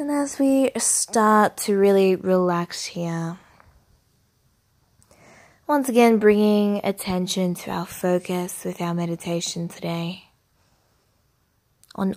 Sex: female